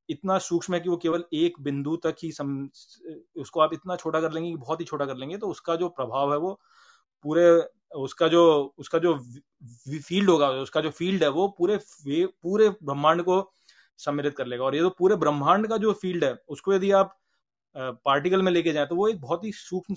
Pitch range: 145-190 Hz